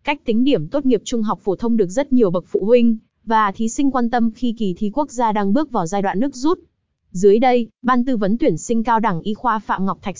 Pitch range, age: 205-255 Hz, 20-39